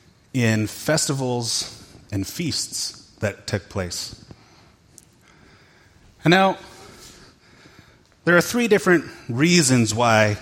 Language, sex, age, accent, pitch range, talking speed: English, male, 30-49, American, 110-140 Hz, 85 wpm